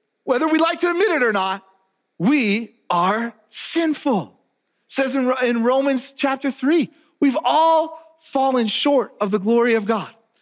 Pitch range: 220-305 Hz